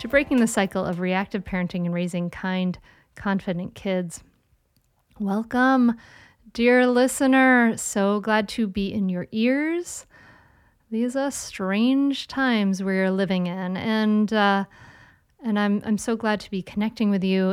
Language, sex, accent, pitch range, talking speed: English, female, American, 190-220 Hz, 140 wpm